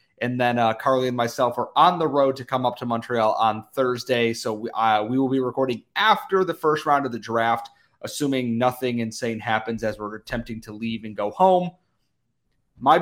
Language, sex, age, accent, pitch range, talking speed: English, male, 30-49, American, 115-140 Hz, 205 wpm